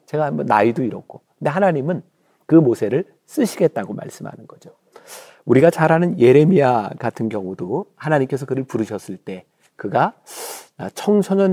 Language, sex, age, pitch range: Korean, male, 40-59, 110-170 Hz